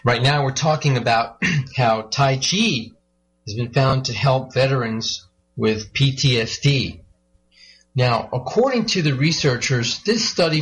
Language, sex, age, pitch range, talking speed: English, male, 40-59, 110-140 Hz, 130 wpm